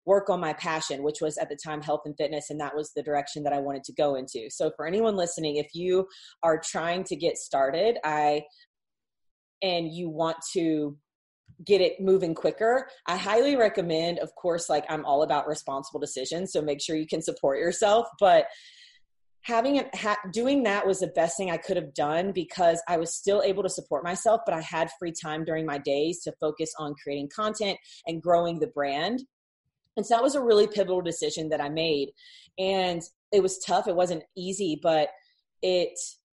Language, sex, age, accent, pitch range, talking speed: English, female, 30-49, American, 155-200 Hz, 200 wpm